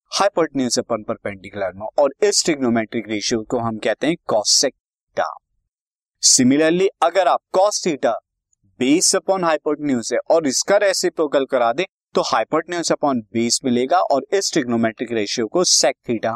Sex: male